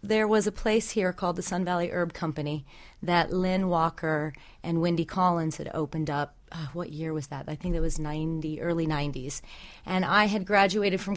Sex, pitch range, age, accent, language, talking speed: female, 155-185 Hz, 30-49, American, English, 200 wpm